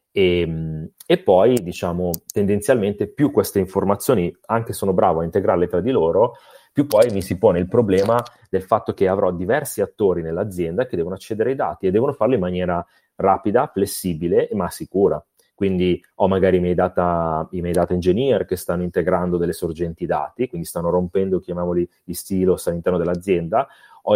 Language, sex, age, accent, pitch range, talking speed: Italian, male, 30-49, native, 85-100 Hz, 165 wpm